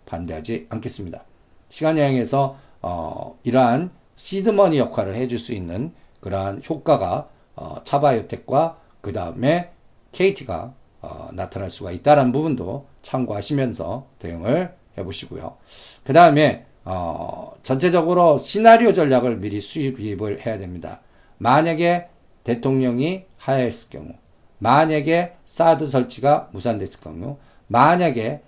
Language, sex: Korean, male